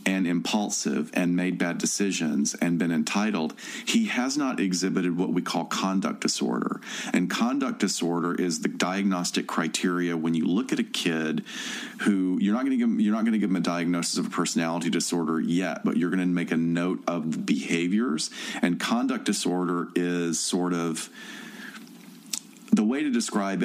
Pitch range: 85-115 Hz